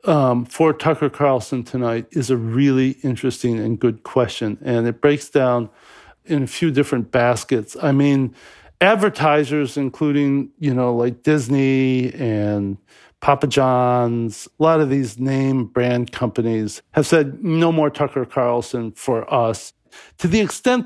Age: 50-69